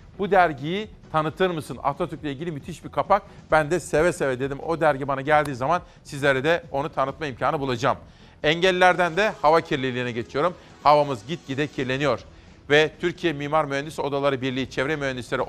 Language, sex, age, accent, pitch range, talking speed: Turkish, male, 40-59, native, 140-175 Hz, 160 wpm